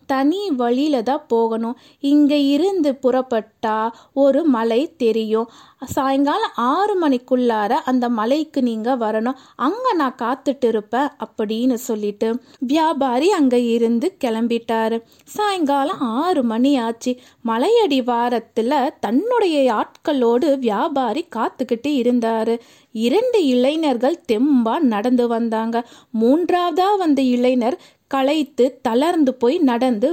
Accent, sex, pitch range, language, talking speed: native, female, 240-295 Hz, Tamil, 85 wpm